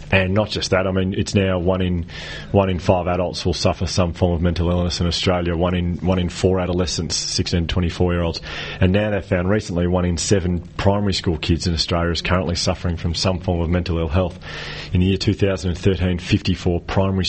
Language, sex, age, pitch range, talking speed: English, male, 30-49, 85-95 Hz, 230 wpm